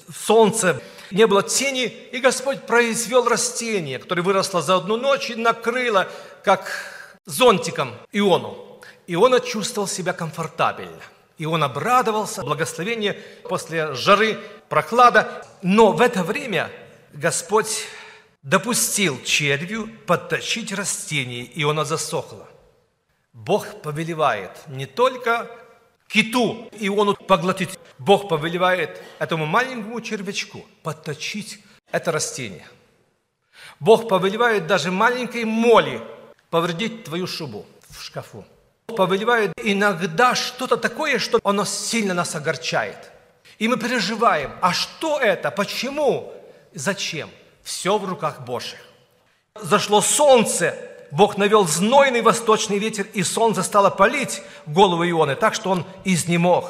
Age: 50-69